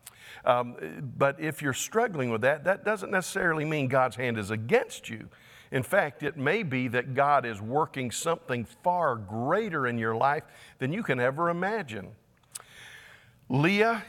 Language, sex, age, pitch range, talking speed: English, male, 50-69, 120-150 Hz, 160 wpm